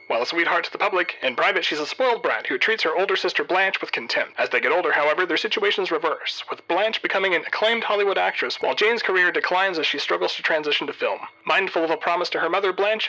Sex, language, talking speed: male, English, 250 wpm